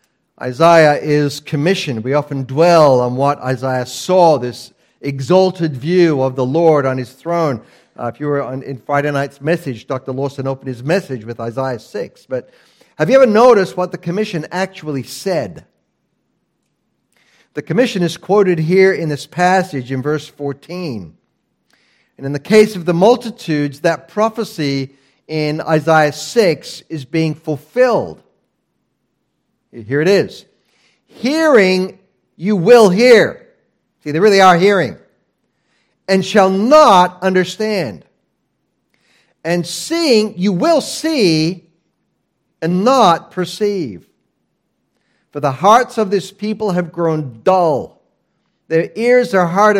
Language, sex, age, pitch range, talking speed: English, male, 50-69, 145-200 Hz, 130 wpm